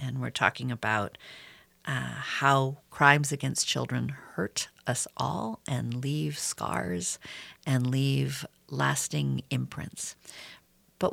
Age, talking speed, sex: 50-69, 110 wpm, female